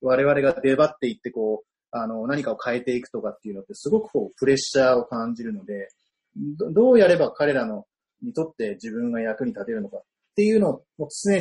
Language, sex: Japanese, male